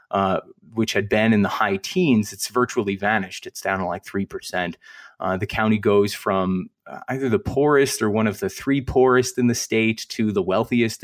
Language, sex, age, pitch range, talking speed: English, male, 30-49, 95-115 Hz, 190 wpm